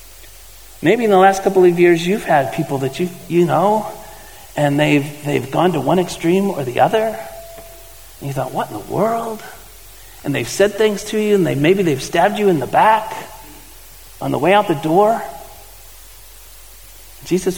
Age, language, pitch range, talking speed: 50-69, English, 160-225 Hz, 180 wpm